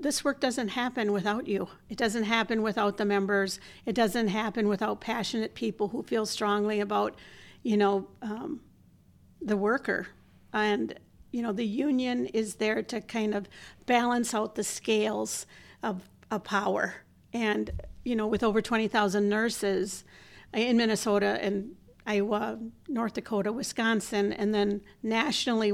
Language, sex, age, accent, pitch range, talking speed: English, female, 50-69, American, 210-255 Hz, 150 wpm